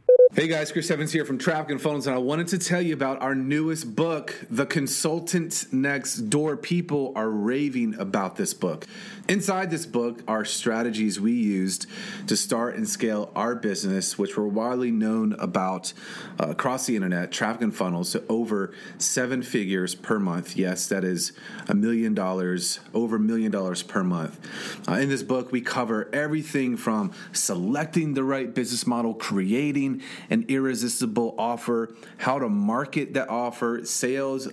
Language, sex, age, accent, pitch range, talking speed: English, male, 30-49, American, 110-160 Hz, 165 wpm